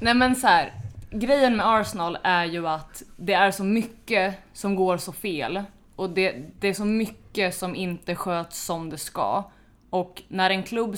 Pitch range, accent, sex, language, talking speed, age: 165-205 Hz, native, female, Swedish, 185 wpm, 20-39